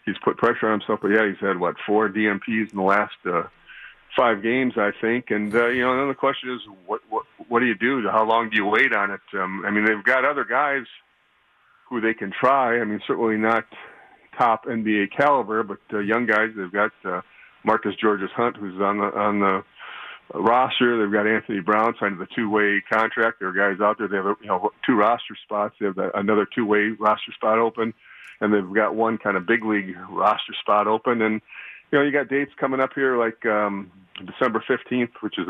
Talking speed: 215 wpm